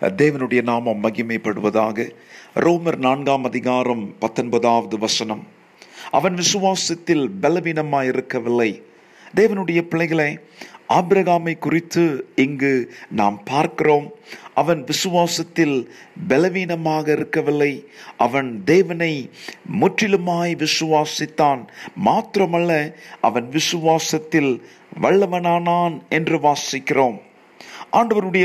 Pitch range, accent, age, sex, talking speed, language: 140-175 Hz, native, 50-69, male, 70 wpm, Tamil